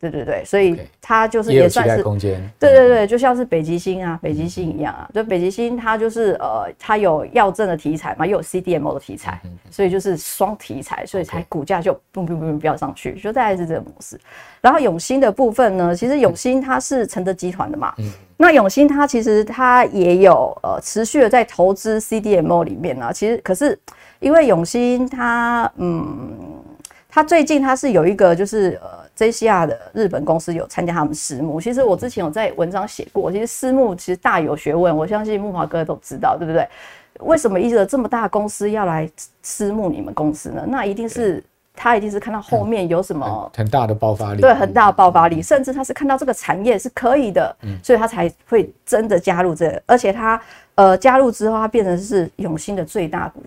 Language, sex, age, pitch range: Chinese, female, 30-49, 170-235 Hz